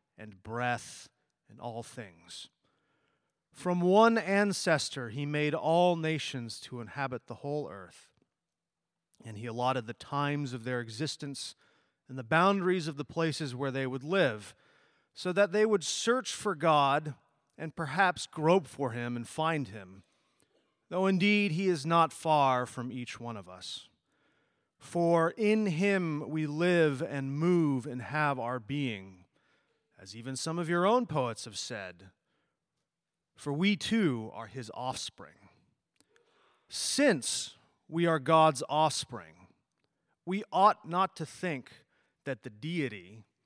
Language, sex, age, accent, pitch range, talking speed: English, male, 30-49, American, 125-170 Hz, 135 wpm